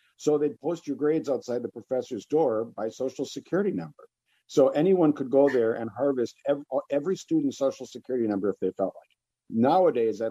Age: 50-69